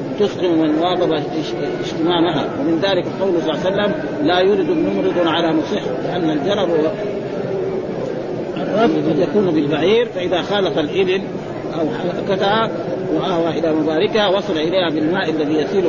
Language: Arabic